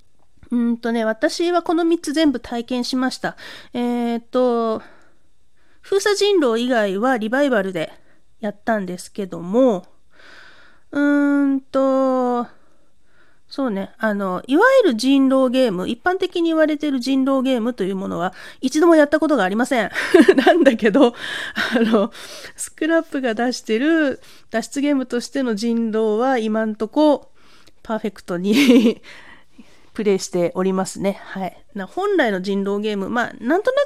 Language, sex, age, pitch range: Japanese, female, 40-59, 215-295 Hz